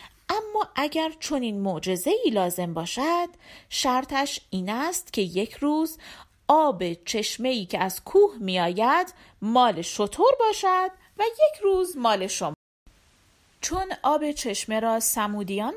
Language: Persian